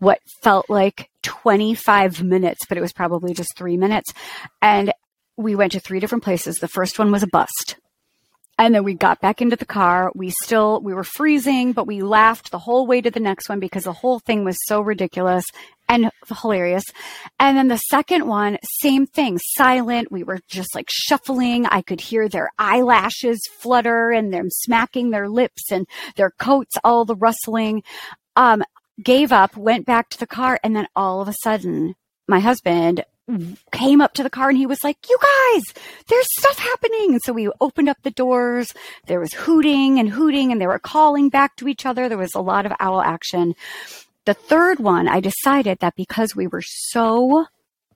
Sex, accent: female, American